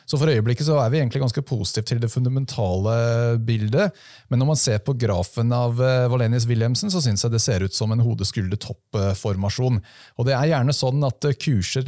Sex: male